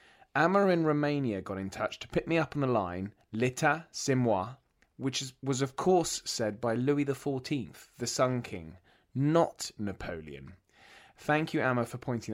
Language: English